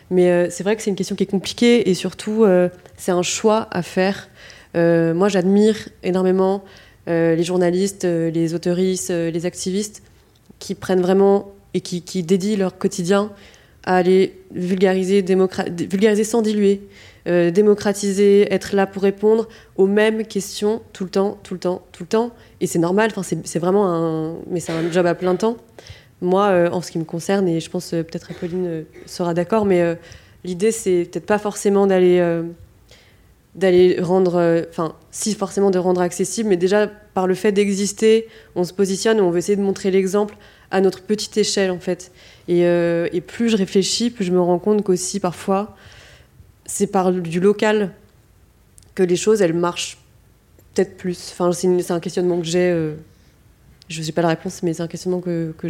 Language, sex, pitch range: French, female, 175-200 Hz